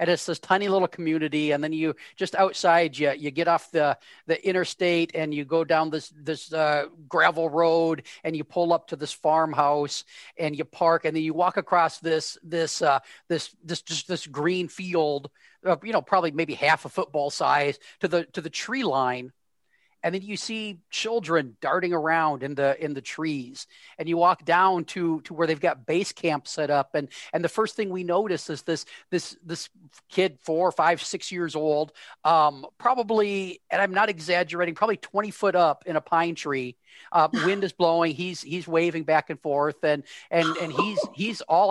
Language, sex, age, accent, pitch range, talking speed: English, male, 40-59, American, 155-180 Hz, 200 wpm